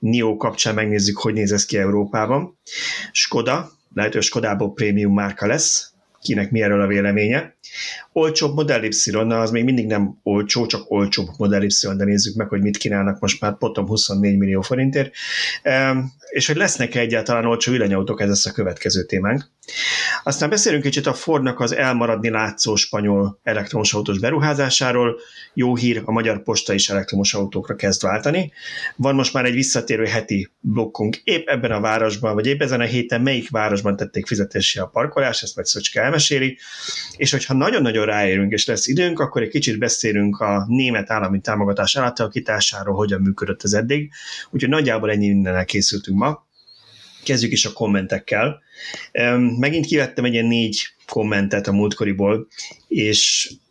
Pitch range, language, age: 100-125 Hz, Hungarian, 30-49